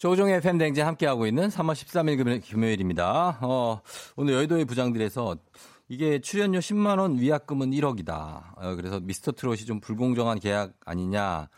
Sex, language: male, Korean